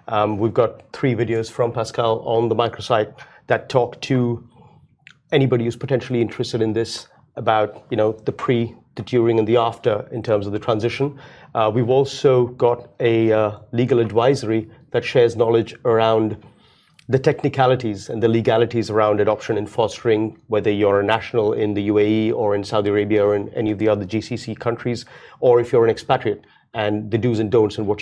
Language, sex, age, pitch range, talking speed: Arabic, male, 30-49, 110-130 Hz, 185 wpm